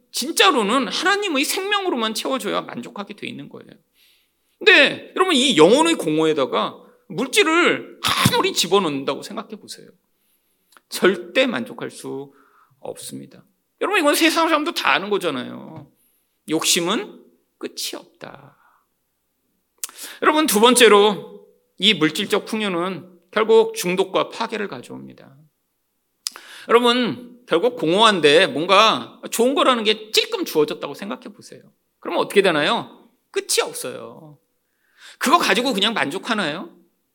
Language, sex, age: Korean, male, 40-59